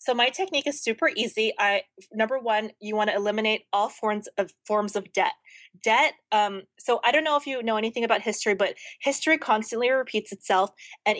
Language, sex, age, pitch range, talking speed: English, female, 20-39, 200-240 Hz, 200 wpm